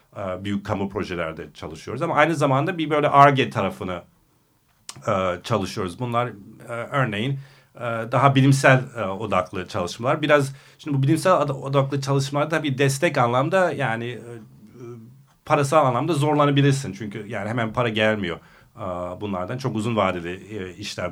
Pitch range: 100-135 Hz